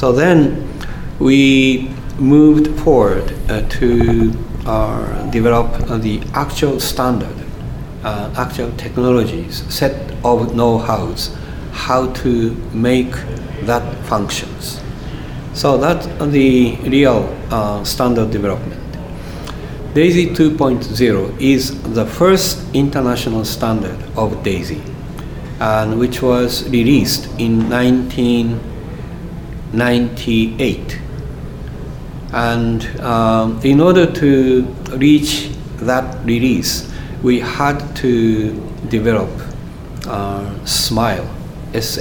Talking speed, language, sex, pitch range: 90 wpm, English, male, 110-130 Hz